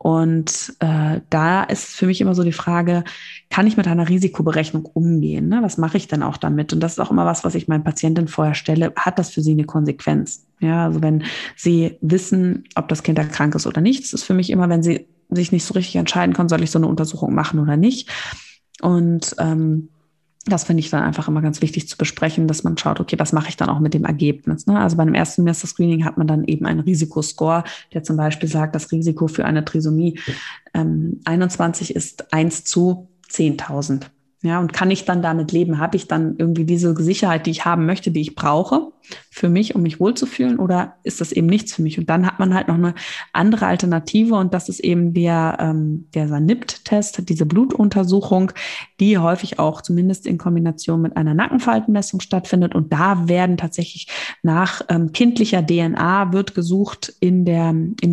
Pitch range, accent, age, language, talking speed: 160-185 Hz, German, 20-39, German, 205 wpm